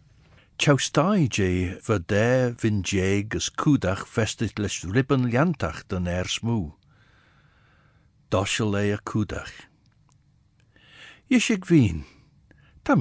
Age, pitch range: 60-79, 95-135 Hz